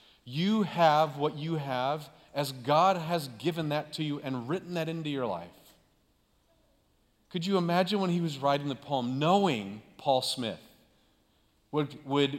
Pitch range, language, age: 130-170 Hz, English, 40-59